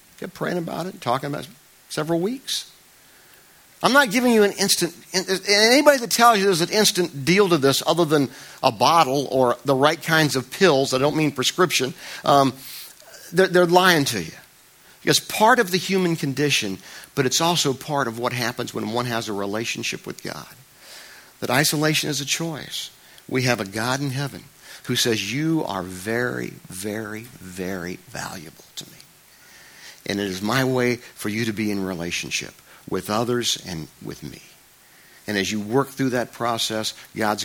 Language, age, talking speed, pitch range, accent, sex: English, 50-69, 180 wpm, 110-165 Hz, American, male